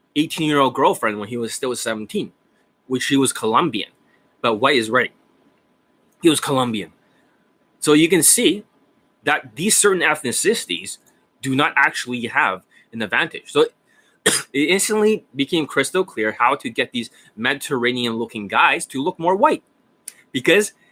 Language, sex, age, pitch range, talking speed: English, male, 20-39, 125-170 Hz, 150 wpm